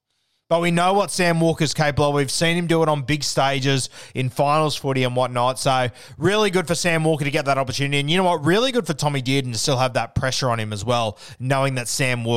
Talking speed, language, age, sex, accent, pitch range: 250 wpm, English, 20-39, male, Australian, 130-155 Hz